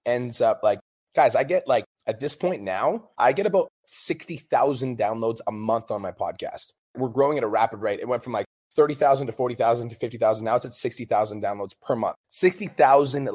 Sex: male